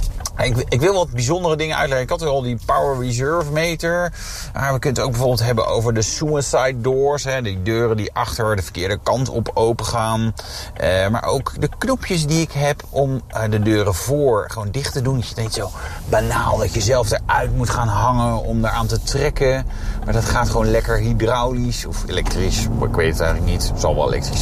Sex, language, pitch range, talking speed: male, Dutch, 105-135 Hz, 215 wpm